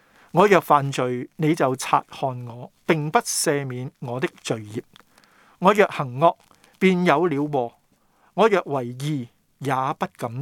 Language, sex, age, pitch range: Chinese, male, 50-69, 135-185 Hz